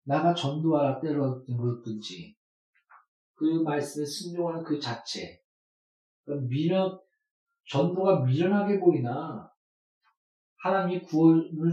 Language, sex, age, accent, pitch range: Korean, male, 40-59, native, 135-175 Hz